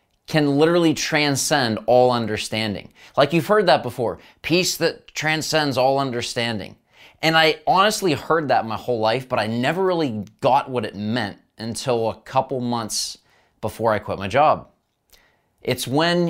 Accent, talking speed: American, 155 wpm